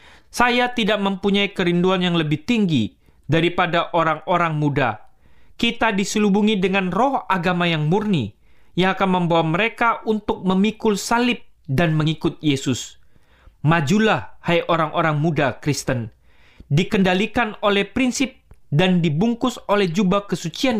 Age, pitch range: 30-49, 155-215 Hz